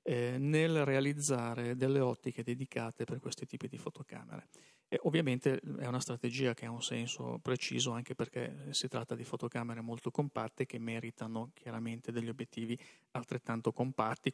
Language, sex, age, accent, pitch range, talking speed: Italian, male, 40-59, native, 120-140 Hz, 145 wpm